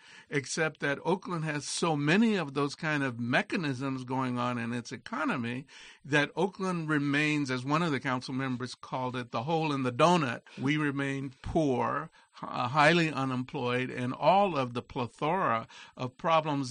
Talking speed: 160 wpm